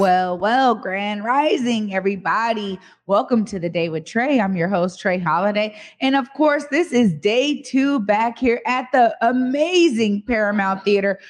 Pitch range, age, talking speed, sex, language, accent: 200-255 Hz, 30-49, 160 wpm, female, English, American